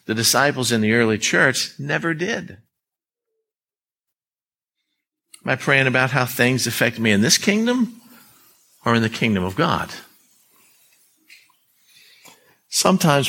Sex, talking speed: male, 115 wpm